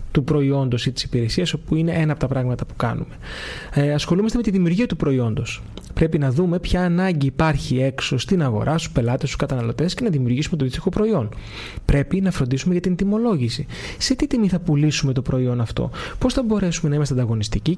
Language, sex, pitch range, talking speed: Greek, male, 130-175 Hz, 200 wpm